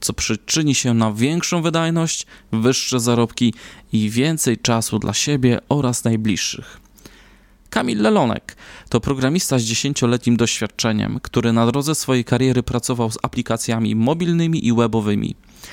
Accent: native